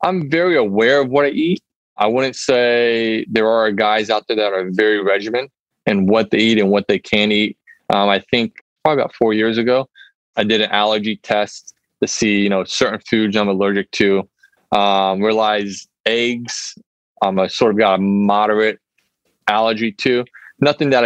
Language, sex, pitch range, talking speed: English, male, 100-110 Hz, 185 wpm